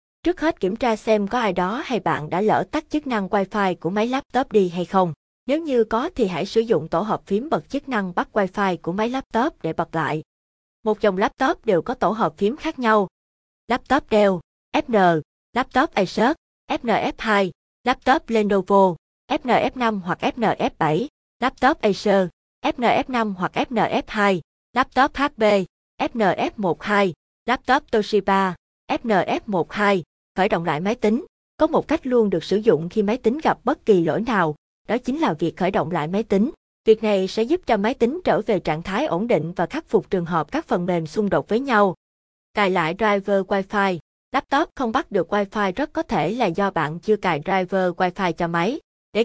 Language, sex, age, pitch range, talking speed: Vietnamese, female, 20-39, 185-235 Hz, 185 wpm